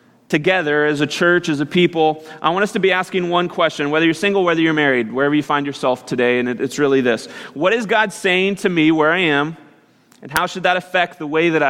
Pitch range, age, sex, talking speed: 140-180 Hz, 30-49, male, 240 wpm